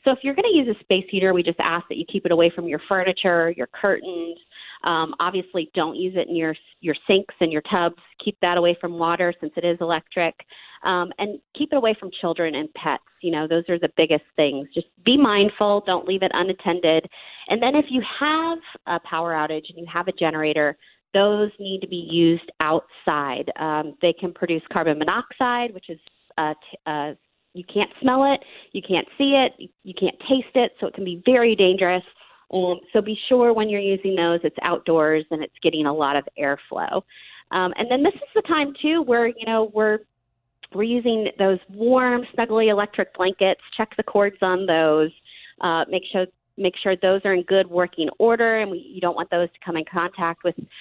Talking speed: 210 wpm